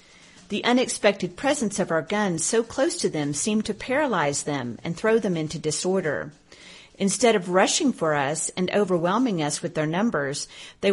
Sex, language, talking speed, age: female, English, 170 wpm, 40-59